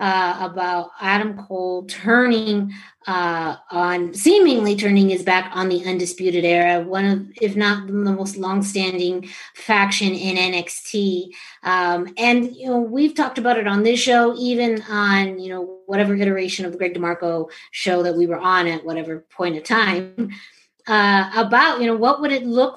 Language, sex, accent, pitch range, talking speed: English, female, American, 185-230 Hz, 170 wpm